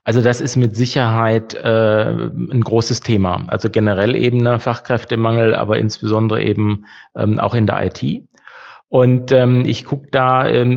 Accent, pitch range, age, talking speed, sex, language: German, 115-130 Hz, 40-59, 155 wpm, male, German